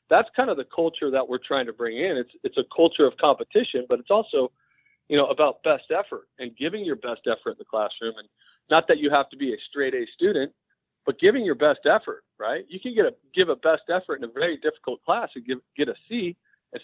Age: 40-59